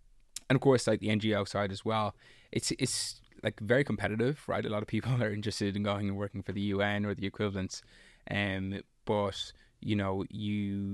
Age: 20-39